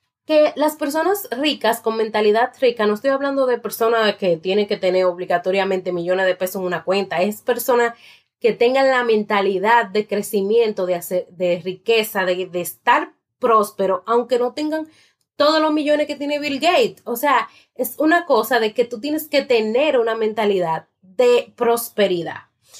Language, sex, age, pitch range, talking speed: Spanish, female, 30-49, 205-270 Hz, 165 wpm